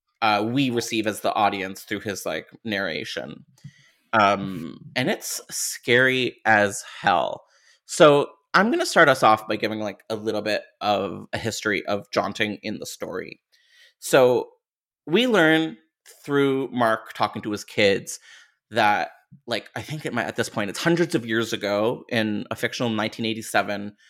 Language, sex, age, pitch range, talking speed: English, male, 30-49, 110-130 Hz, 155 wpm